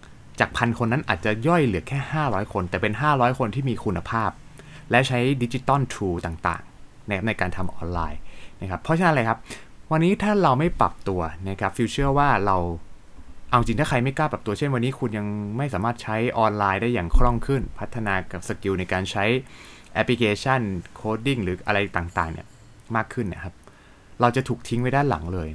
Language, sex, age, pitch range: Thai, male, 20-39, 95-130 Hz